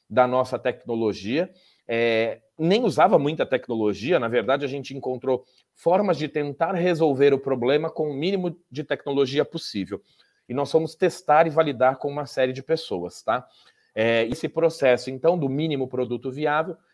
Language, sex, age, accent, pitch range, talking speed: Portuguese, male, 40-59, Brazilian, 125-155 Hz, 150 wpm